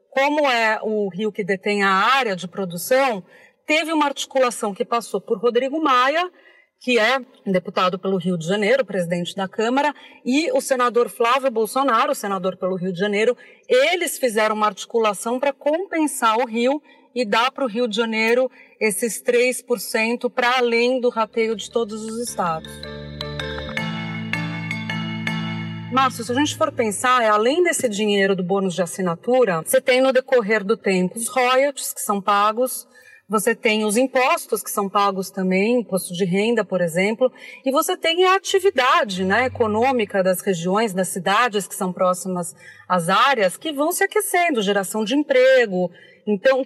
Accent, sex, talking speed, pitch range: Brazilian, female, 160 wpm, 200-270 Hz